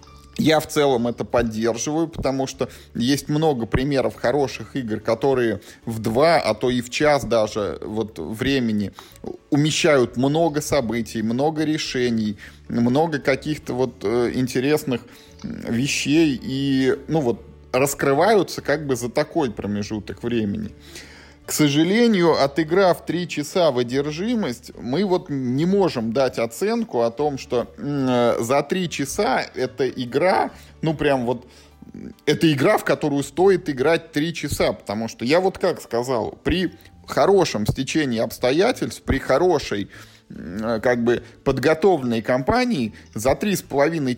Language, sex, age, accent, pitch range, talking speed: Russian, male, 20-39, native, 115-155 Hz, 125 wpm